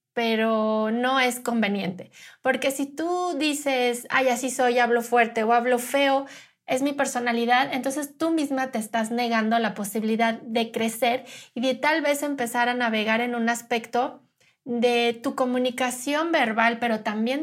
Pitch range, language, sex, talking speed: 230-270 Hz, Spanish, female, 155 wpm